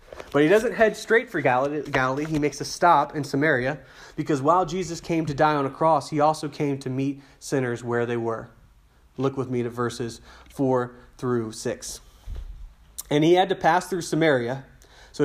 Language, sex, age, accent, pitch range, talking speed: English, male, 30-49, American, 130-165 Hz, 185 wpm